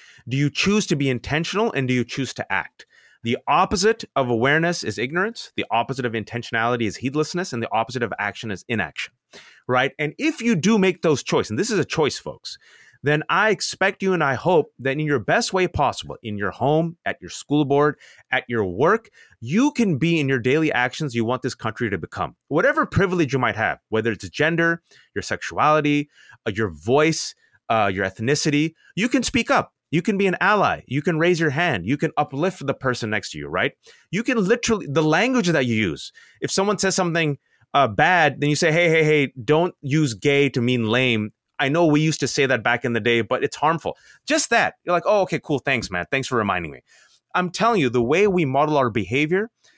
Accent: American